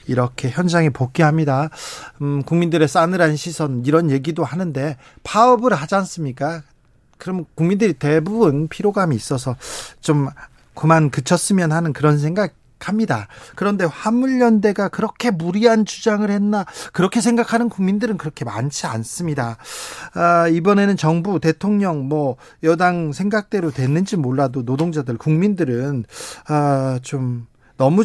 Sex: male